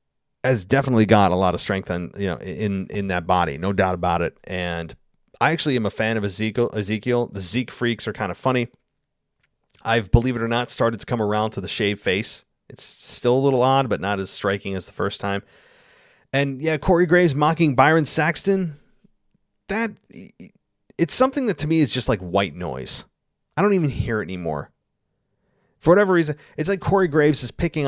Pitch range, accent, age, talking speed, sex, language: 100-125 Hz, American, 30-49, 200 wpm, male, English